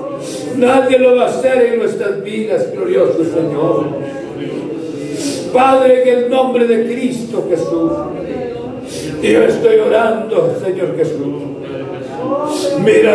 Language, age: Spanish, 60-79